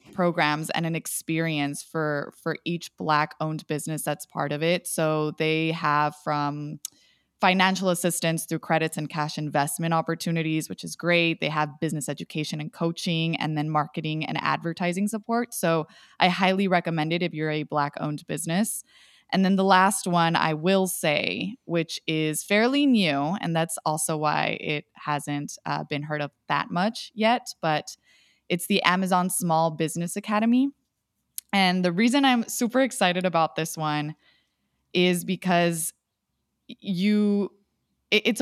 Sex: female